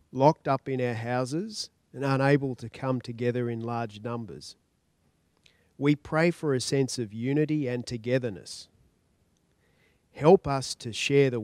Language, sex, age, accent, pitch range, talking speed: English, male, 40-59, Australian, 115-140 Hz, 140 wpm